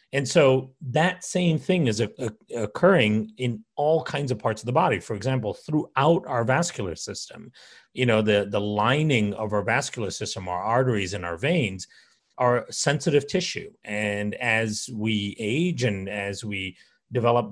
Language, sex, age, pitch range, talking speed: English, male, 40-59, 105-135 Hz, 160 wpm